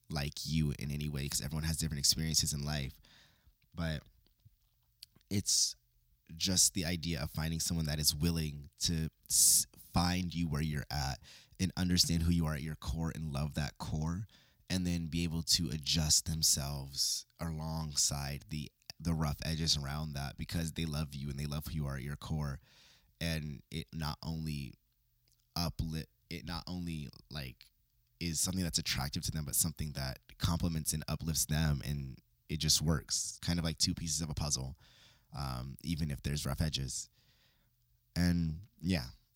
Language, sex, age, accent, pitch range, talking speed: English, male, 20-39, American, 75-85 Hz, 170 wpm